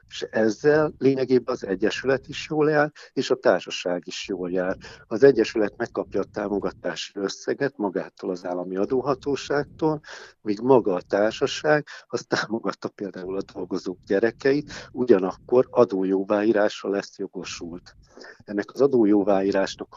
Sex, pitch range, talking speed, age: male, 95-130 Hz, 125 wpm, 60-79